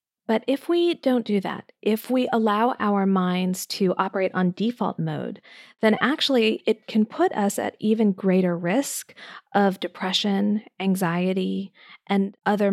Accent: American